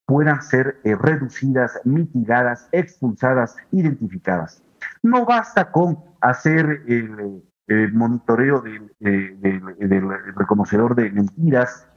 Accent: Mexican